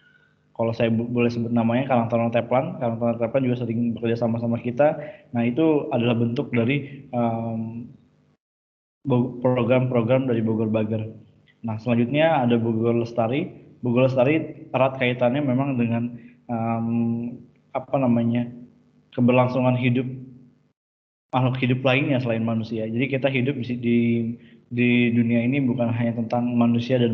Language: Indonesian